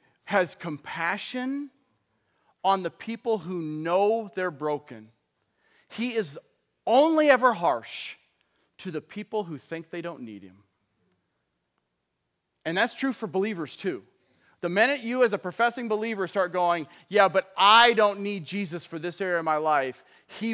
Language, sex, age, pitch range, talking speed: English, male, 40-59, 175-210 Hz, 150 wpm